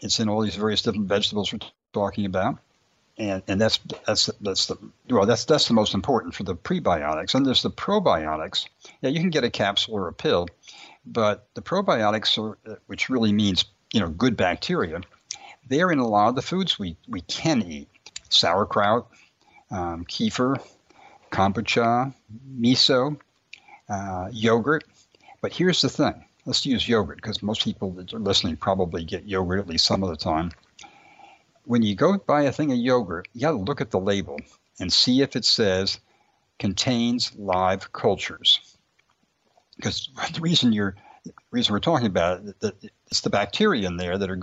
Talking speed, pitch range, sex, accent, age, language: 175 wpm, 95-120 Hz, male, American, 60-79, English